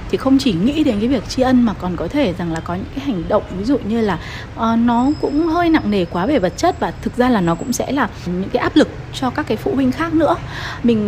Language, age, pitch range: Vietnamese, 20-39, 200-270 Hz